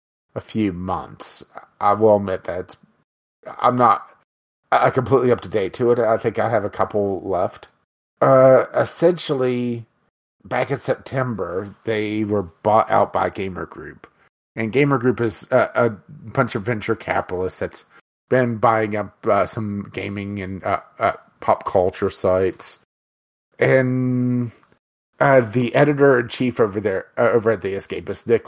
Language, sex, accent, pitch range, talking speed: English, male, American, 105-130 Hz, 150 wpm